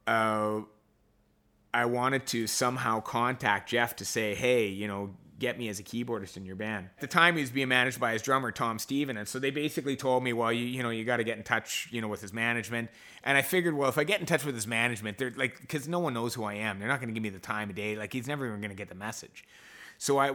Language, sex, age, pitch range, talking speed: English, male, 30-49, 110-140 Hz, 280 wpm